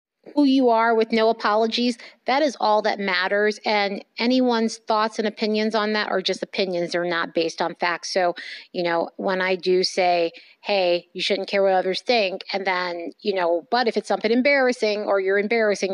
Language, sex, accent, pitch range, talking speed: English, female, American, 180-215 Hz, 200 wpm